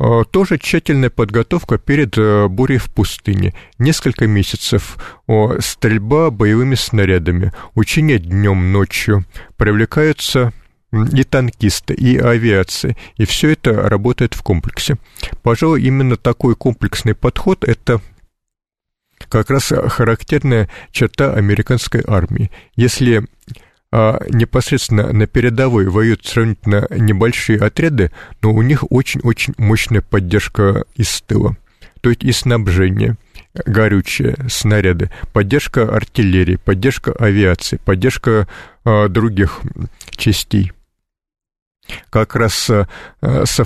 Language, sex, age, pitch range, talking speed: Russian, male, 50-69, 100-125 Hz, 100 wpm